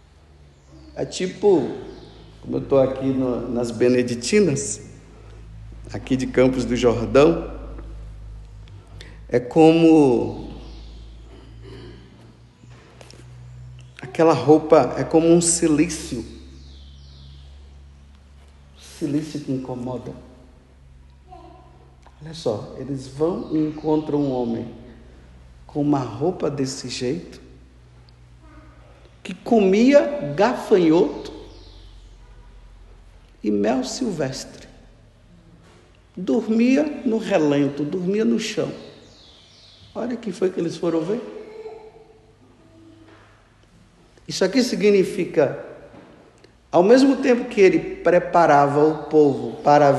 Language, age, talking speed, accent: Portuguese, 50-69, 85 wpm, Brazilian